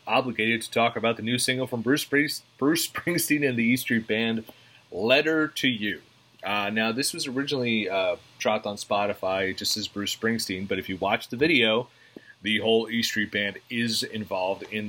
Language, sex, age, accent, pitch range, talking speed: English, male, 30-49, American, 100-125 Hz, 185 wpm